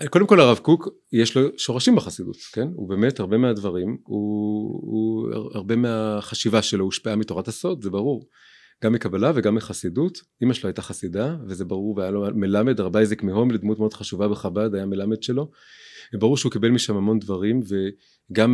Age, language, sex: 30-49, Hebrew, male